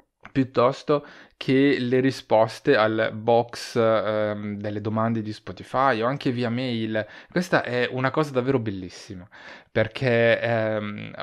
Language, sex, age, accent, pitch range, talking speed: Italian, male, 20-39, native, 110-155 Hz, 125 wpm